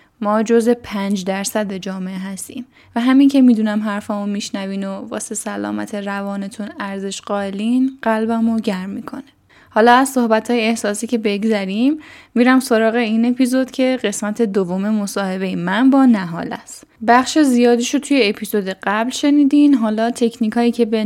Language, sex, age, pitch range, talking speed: Persian, female, 10-29, 205-250 Hz, 140 wpm